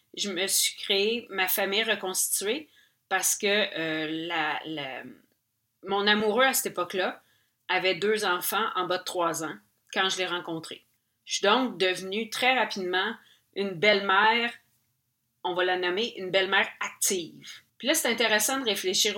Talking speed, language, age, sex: 150 wpm, French, 30-49, female